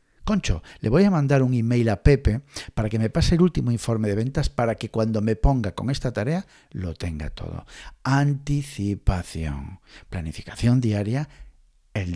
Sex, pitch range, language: male, 90-130 Hz, Spanish